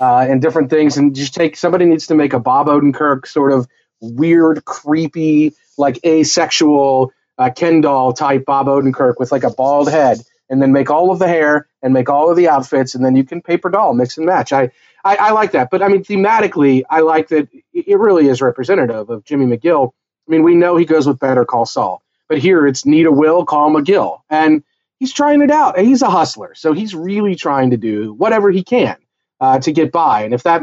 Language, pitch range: English, 130-170 Hz